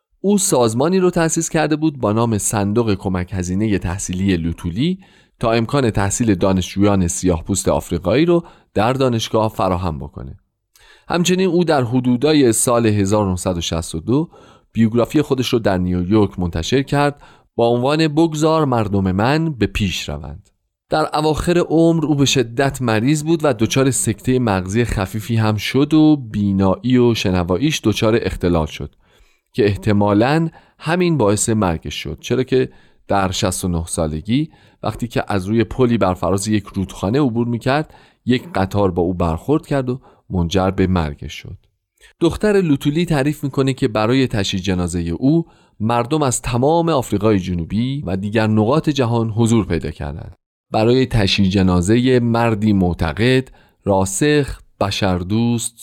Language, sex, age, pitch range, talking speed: Persian, male, 40-59, 95-135 Hz, 135 wpm